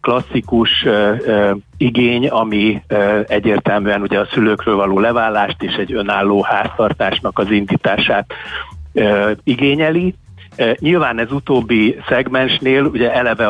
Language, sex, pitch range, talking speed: Hungarian, male, 100-120 Hz, 95 wpm